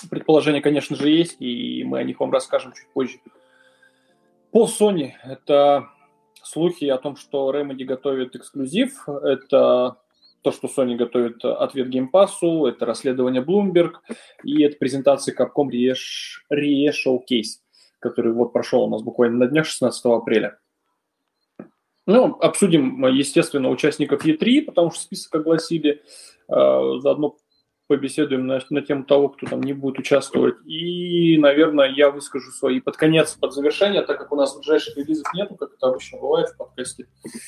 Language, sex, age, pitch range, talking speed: Russian, male, 20-39, 135-175 Hz, 145 wpm